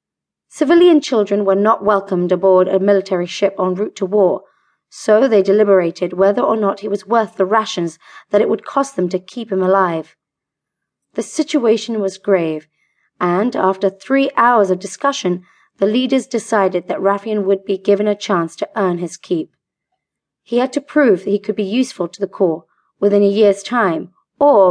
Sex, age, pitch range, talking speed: female, 30-49, 185-225 Hz, 180 wpm